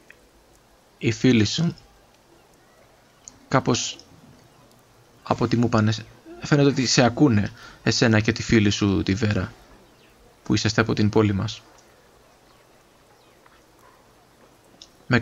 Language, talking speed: Greek, 90 wpm